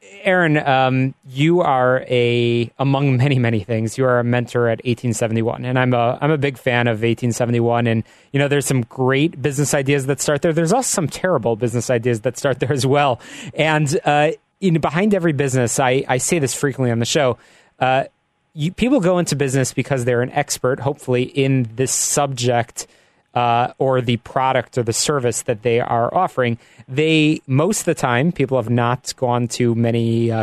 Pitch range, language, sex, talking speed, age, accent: 120-150 Hz, English, male, 190 wpm, 30-49, American